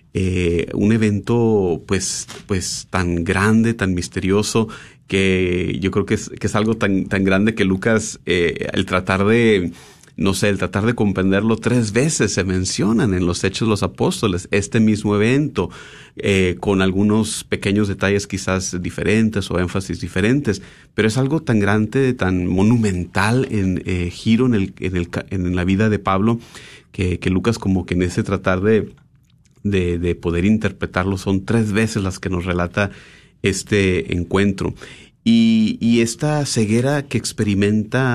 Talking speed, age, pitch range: 160 wpm, 40-59, 95-115 Hz